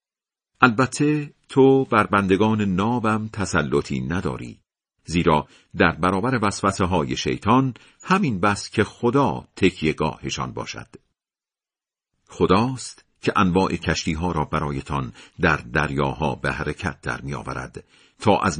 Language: Persian